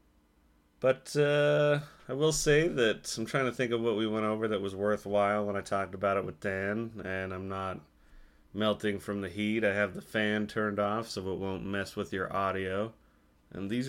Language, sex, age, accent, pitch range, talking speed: English, male, 30-49, American, 90-110 Hz, 205 wpm